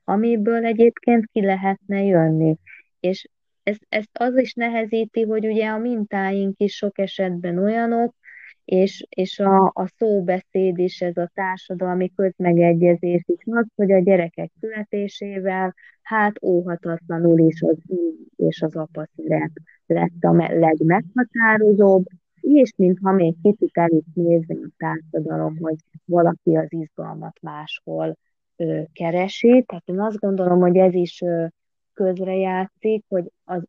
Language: Hungarian